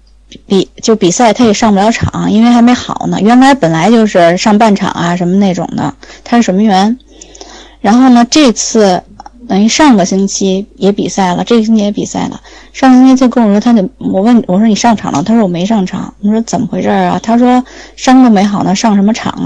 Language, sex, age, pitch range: Chinese, female, 20-39, 195-240 Hz